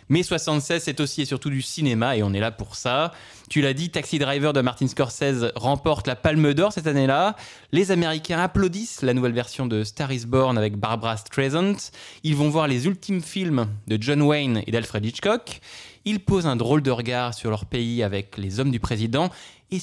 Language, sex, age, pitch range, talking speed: French, male, 20-39, 115-155 Hz, 205 wpm